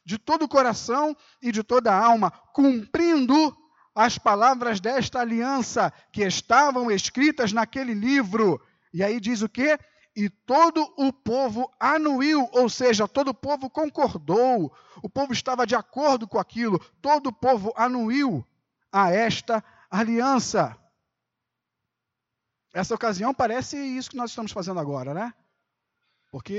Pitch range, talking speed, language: 200-270 Hz, 135 wpm, Portuguese